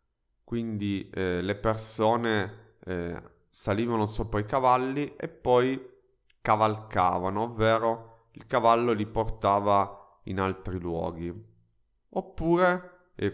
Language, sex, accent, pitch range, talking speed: Italian, male, native, 100-130 Hz, 100 wpm